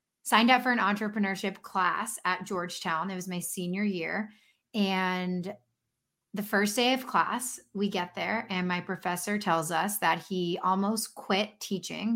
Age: 20-39